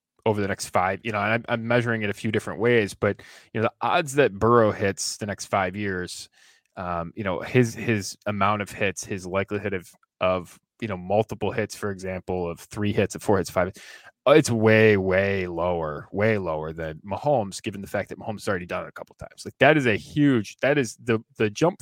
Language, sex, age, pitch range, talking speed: English, male, 20-39, 95-120 Hz, 230 wpm